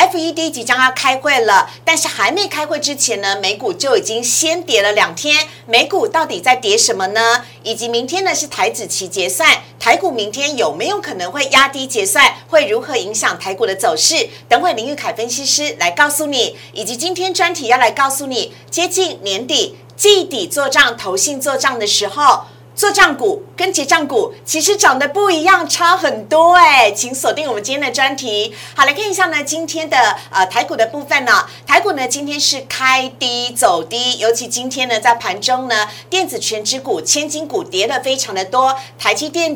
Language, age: Chinese, 50-69